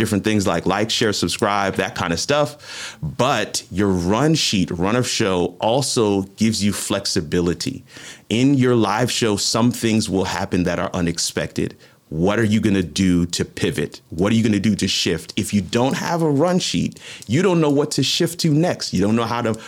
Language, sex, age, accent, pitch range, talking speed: English, male, 40-59, American, 95-125 Hz, 205 wpm